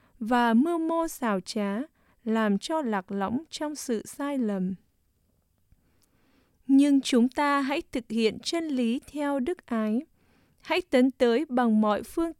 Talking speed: 145 wpm